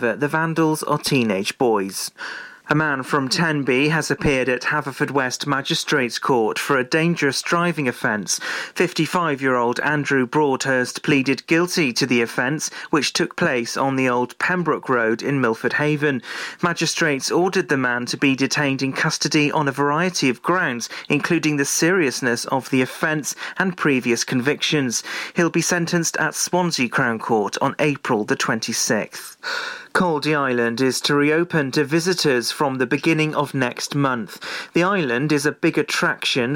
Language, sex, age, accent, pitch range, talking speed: English, male, 40-59, British, 130-160 Hz, 155 wpm